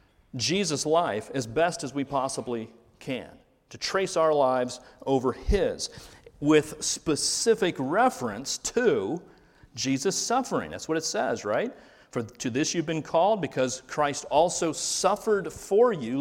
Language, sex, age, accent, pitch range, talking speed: English, male, 40-59, American, 120-180 Hz, 135 wpm